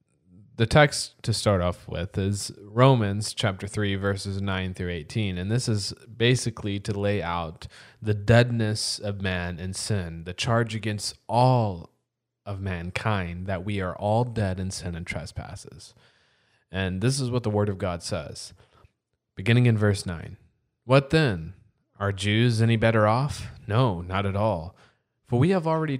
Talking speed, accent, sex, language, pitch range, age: 160 wpm, American, male, English, 95-115 Hz, 20-39